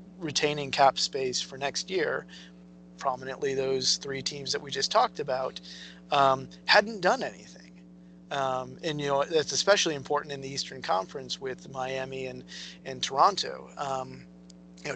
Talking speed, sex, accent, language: 150 wpm, male, American, English